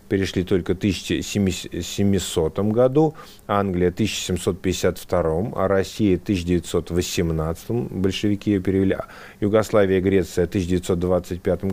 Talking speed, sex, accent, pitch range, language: 100 wpm, male, native, 90-105 Hz, Russian